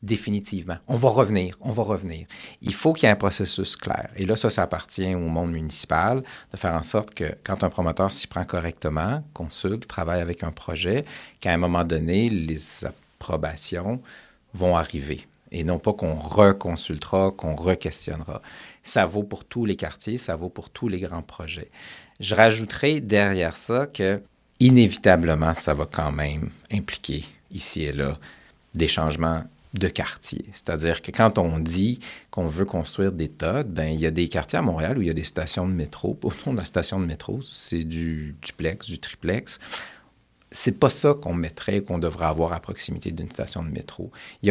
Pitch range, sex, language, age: 80-105 Hz, male, French, 50-69